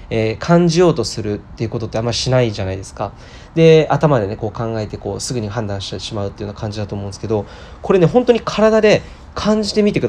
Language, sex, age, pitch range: Japanese, male, 20-39, 105-170 Hz